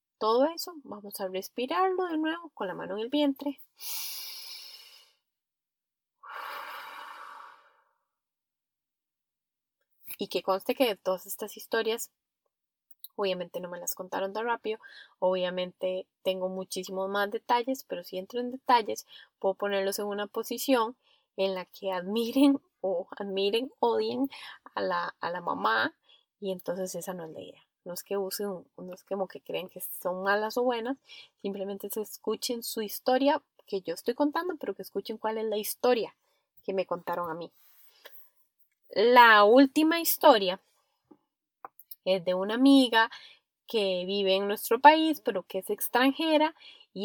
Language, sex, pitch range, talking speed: Spanish, female, 195-270 Hz, 145 wpm